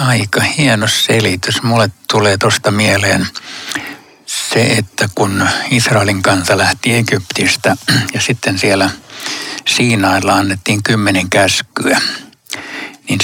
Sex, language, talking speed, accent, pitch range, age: male, Finnish, 100 wpm, native, 100-120 Hz, 60-79